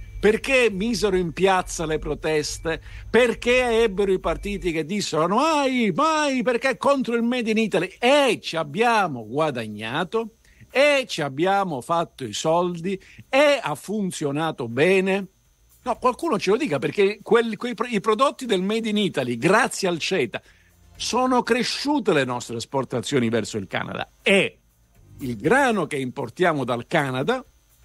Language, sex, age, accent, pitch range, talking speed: Italian, male, 50-69, native, 140-225 Hz, 140 wpm